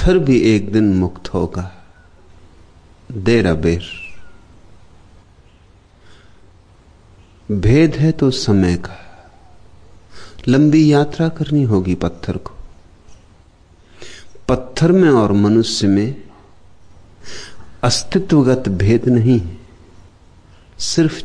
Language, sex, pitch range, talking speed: Hindi, male, 90-130 Hz, 80 wpm